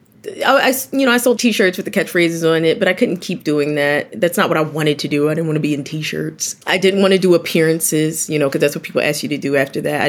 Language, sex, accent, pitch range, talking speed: English, female, American, 150-195 Hz, 310 wpm